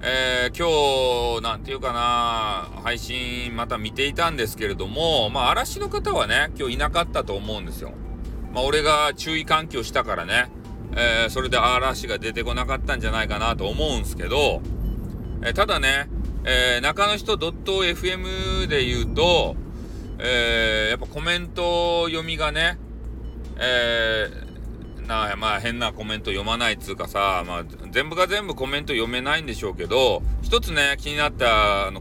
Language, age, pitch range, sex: Japanese, 40-59, 110-155 Hz, male